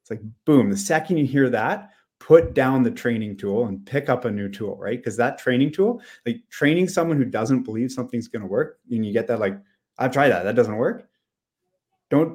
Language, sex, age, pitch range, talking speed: English, male, 30-49, 100-130 Hz, 225 wpm